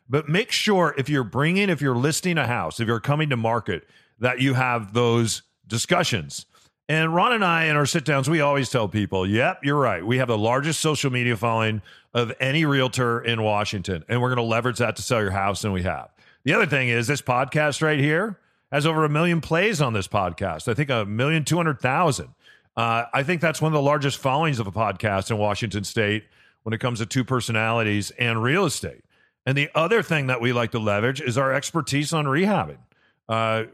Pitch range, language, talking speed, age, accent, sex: 115-145 Hz, English, 210 wpm, 40-59, American, male